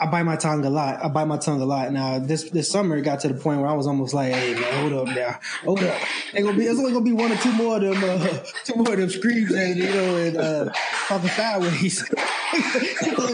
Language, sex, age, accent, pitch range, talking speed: English, male, 20-39, American, 140-175 Hz, 250 wpm